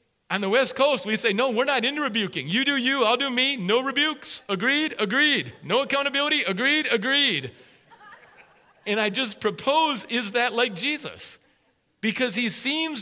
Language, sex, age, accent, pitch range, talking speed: English, male, 40-59, American, 180-255 Hz, 165 wpm